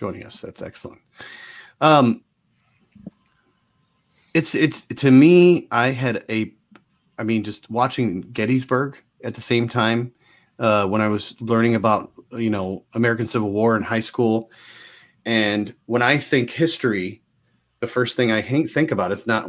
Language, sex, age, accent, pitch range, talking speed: English, male, 30-49, American, 105-125 Hz, 150 wpm